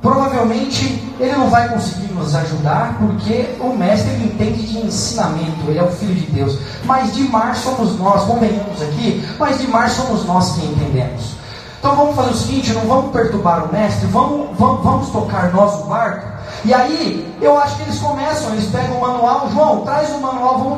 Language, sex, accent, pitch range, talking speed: Portuguese, male, Brazilian, 155-250 Hz, 190 wpm